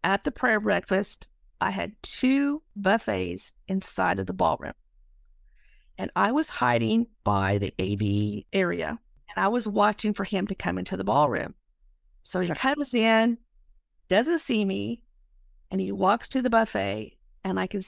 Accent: American